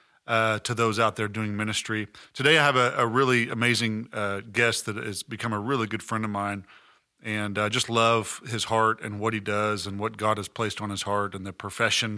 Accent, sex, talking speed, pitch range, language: American, male, 225 wpm, 100-115 Hz, English